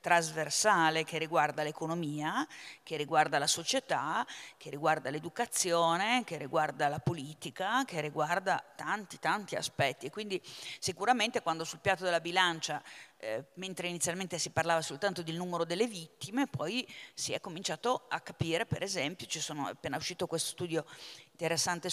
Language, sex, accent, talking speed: Italian, female, native, 140 wpm